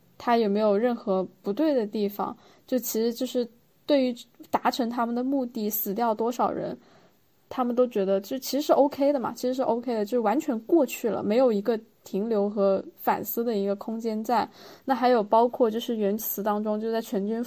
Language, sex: Chinese, female